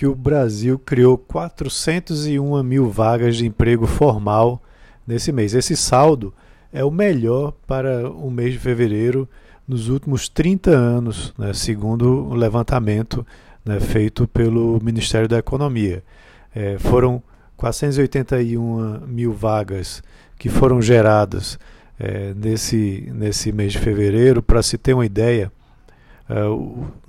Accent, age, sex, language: Brazilian, 50-69, male, Portuguese